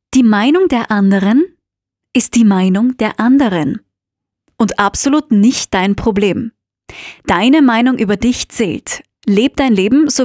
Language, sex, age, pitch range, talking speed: German, female, 20-39, 205-265 Hz, 135 wpm